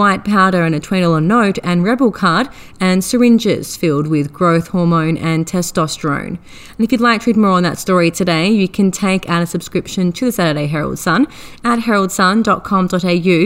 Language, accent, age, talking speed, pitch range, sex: English, Australian, 30-49, 185 wpm, 165-200 Hz, female